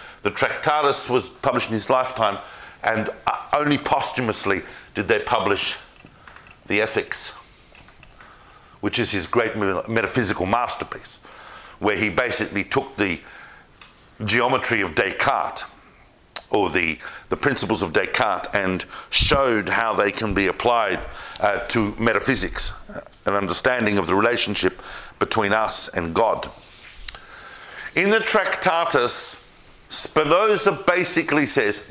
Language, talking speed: English, 115 wpm